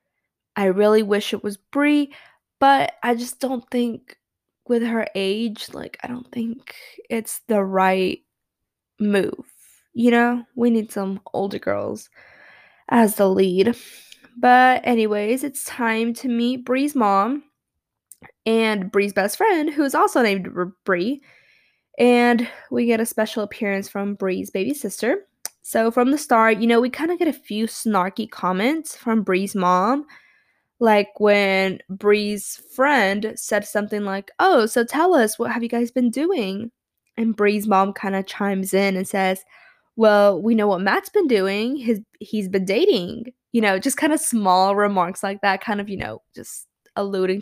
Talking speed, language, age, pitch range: 160 wpm, English, 10-29, 200-250 Hz